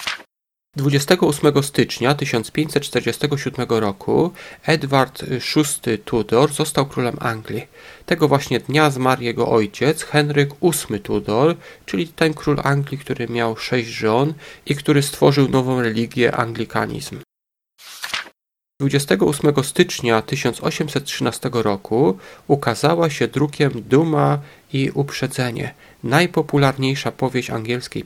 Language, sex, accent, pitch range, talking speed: Polish, male, native, 115-145 Hz, 100 wpm